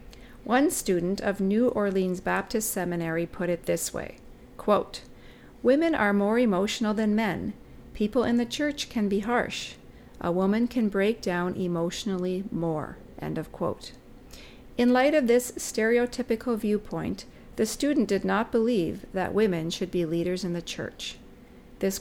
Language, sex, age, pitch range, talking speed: English, female, 50-69, 185-235 Hz, 150 wpm